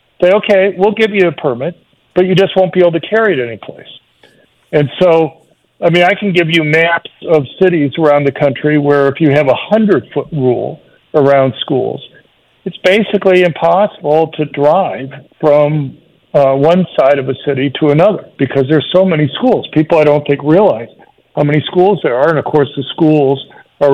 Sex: male